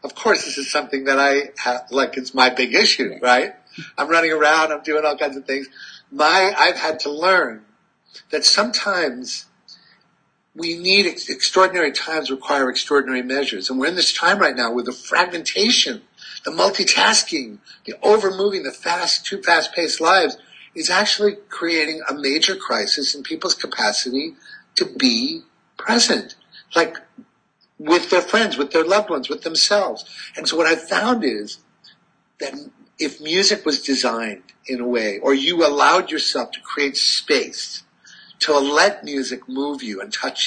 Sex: male